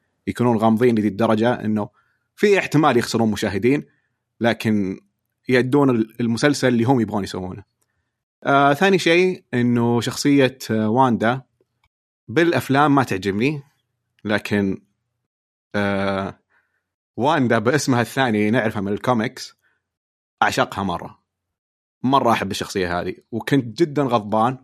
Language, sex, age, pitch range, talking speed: Arabic, male, 30-49, 105-135 Hz, 100 wpm